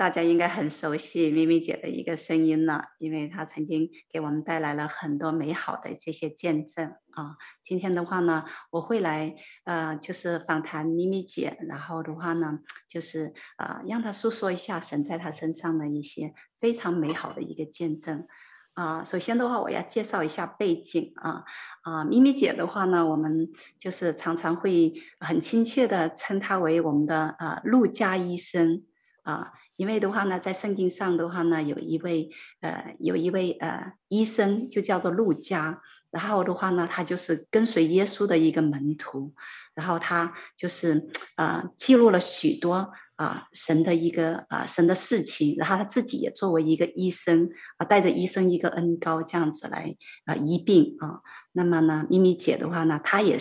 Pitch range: 160-190 Hz